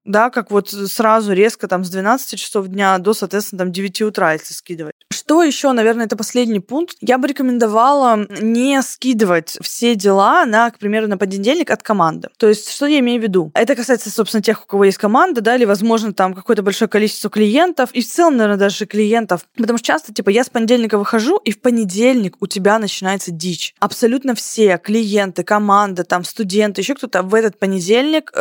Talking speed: 195 wpm